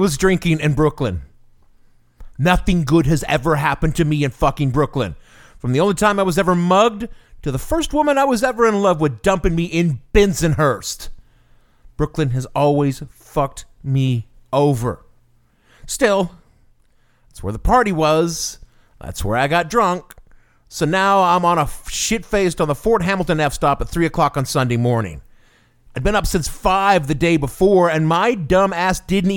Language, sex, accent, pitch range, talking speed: English, male, American, 140-205 Hz, 170 wpm